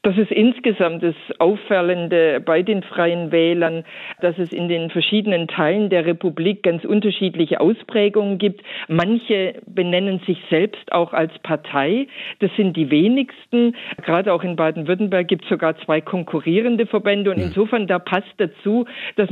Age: 50-69